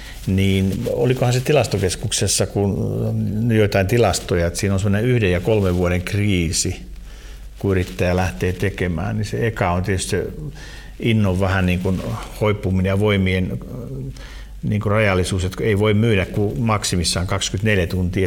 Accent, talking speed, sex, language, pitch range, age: native, 140 wpm, male, Finnish, 95-115 Hz, 50-69